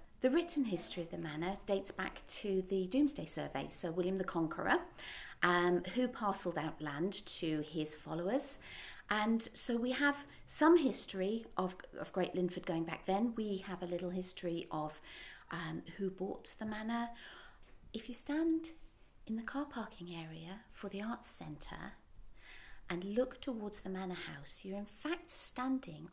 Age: 40-59